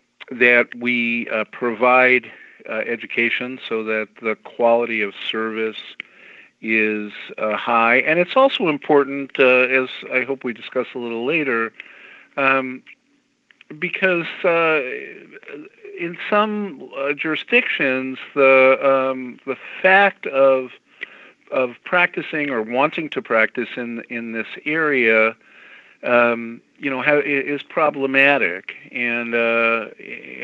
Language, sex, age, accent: English, male, 50-69, American